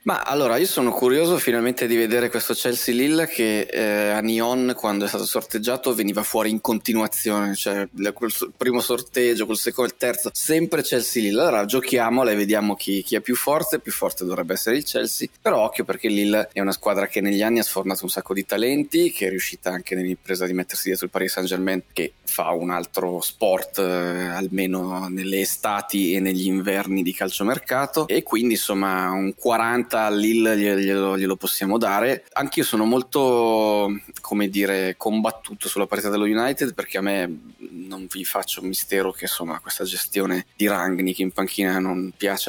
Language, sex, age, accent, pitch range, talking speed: Italian, male, 20-39, native, 95-115 Hz, 180 wpm